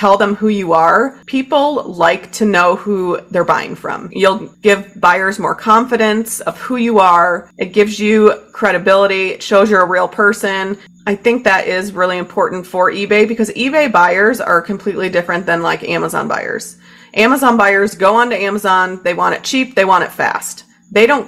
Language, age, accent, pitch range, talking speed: English, 30-49, American, 180-215 Hz, 185 wpm